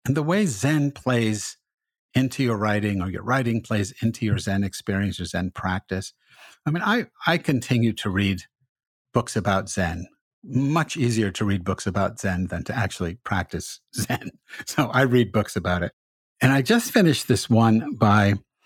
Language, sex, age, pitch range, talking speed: English, male, 50-69, 95-130 Hz, 175 wpm